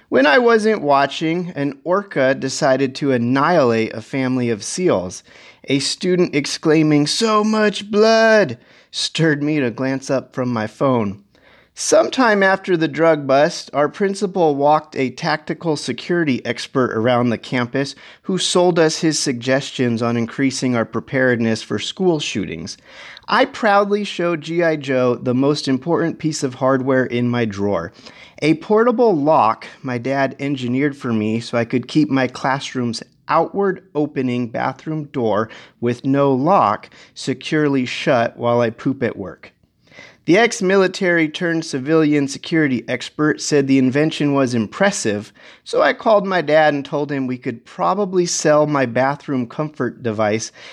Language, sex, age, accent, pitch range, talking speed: English, male, 30-49, American, 125-165 Hz, 145 wpm